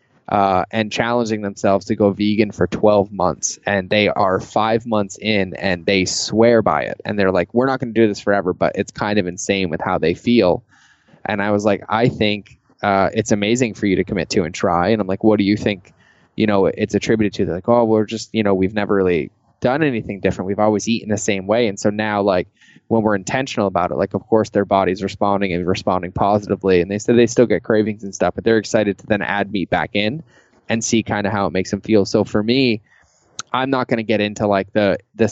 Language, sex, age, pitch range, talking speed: English, male, 20-39, 100-110 Hz, 245 wpm